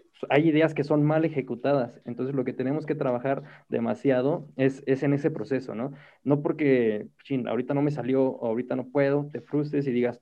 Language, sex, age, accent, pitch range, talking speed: Spanish, male, 20-39, Mexican, 125-145 Hz, 200 wpm